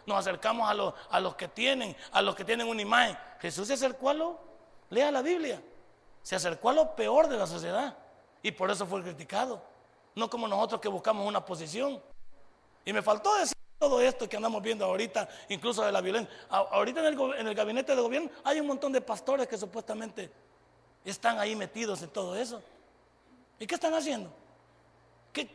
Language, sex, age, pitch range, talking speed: Spanish, male, 40-59, 215-295 Hz, 195 wpm